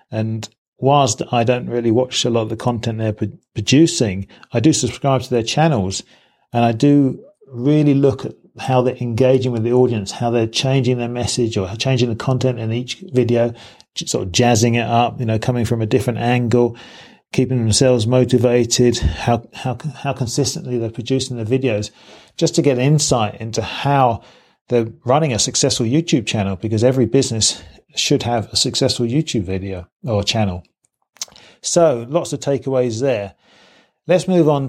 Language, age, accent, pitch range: English, 40-59, British, 115-135 Hz